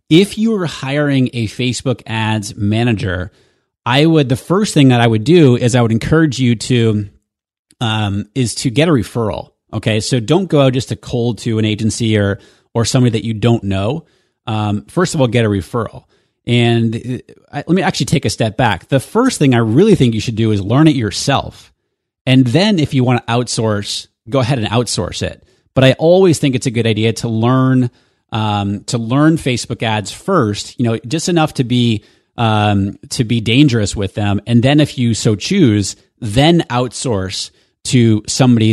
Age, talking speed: 30-49, 195 wpm